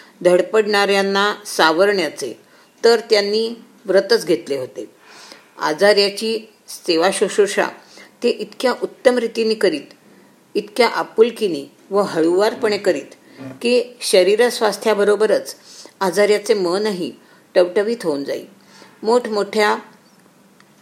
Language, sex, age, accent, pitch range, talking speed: Marathi, female, 50-69, native, 180-230 Hz, 80 wpm